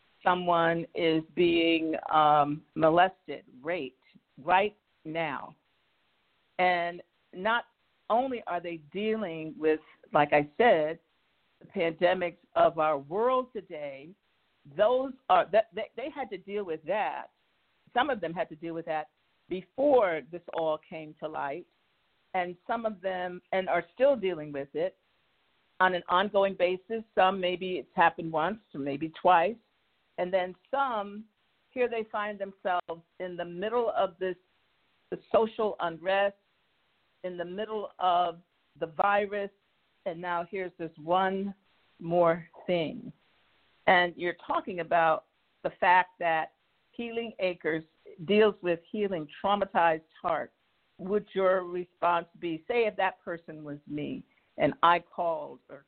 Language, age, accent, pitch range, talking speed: English, 50-69, American, 160-200 Hz, 135 wpm